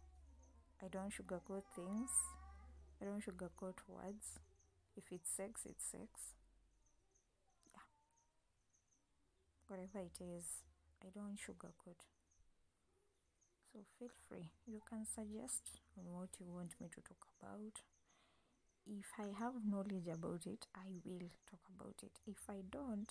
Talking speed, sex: 120 wpm, female